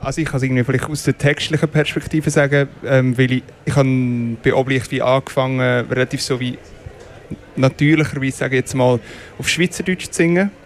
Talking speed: 175 wpm